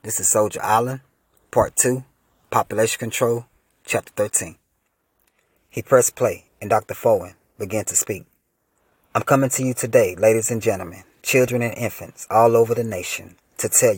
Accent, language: American, English